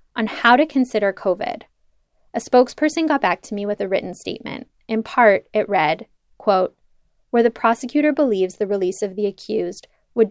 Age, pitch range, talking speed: 20-39, 205-240 Hz, 175 wpm